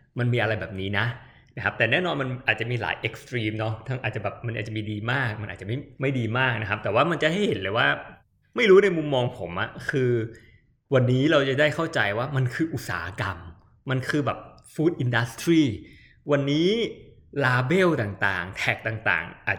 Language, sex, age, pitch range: Thai, male, 20-39, 110-140 Hz